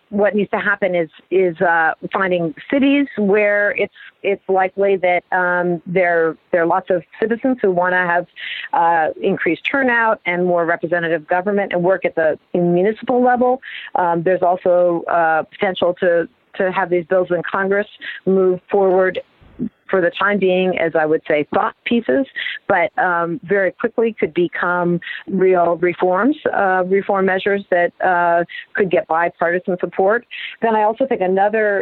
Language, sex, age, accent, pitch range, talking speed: English, female, 40-59, American, 170-200 Hz, 155 wpm